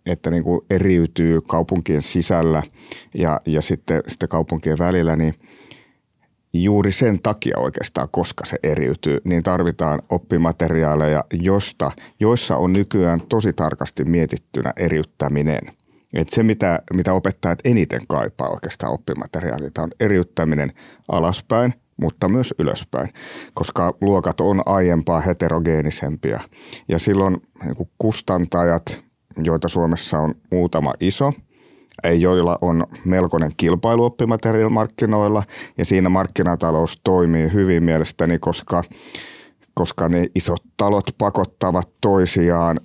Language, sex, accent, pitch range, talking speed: Finnish, male, native, 80-95 Hz, 100 wpm